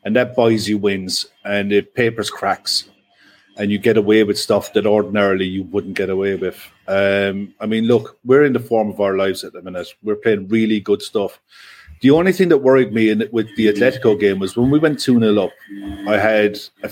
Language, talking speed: English, 215 wpm